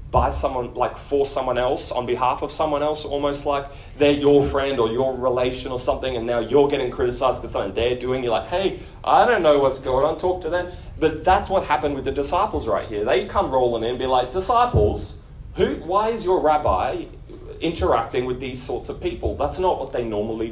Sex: male